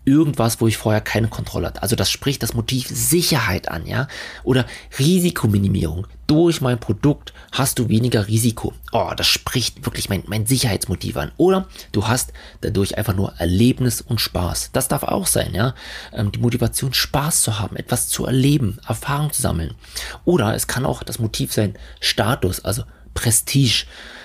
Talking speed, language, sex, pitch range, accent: 170 wpm, German, male, 105-140 Hz, German